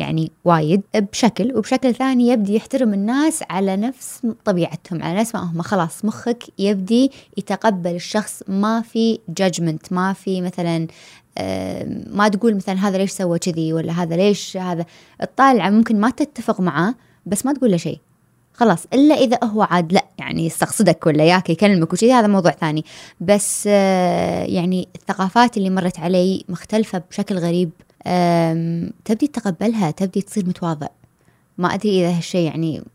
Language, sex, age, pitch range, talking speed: Arabic, female, 20-39, 175-220 Hz, 150 wpm